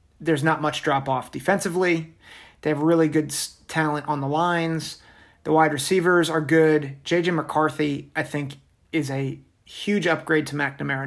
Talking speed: 150 wpm